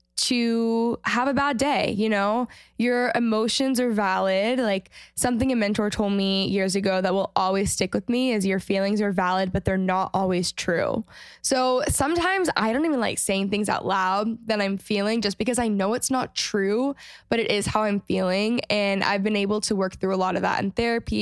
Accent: American